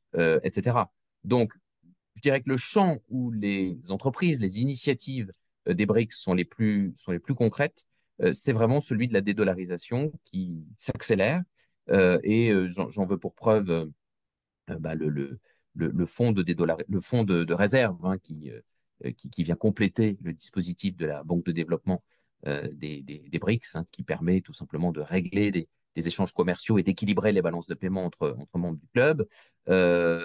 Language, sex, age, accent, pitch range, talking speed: French, male, 30-49, French, 85-110 Hz, 185 wpm